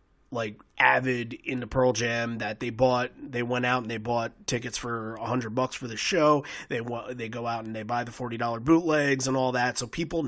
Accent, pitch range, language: American, 115-135 Hz, English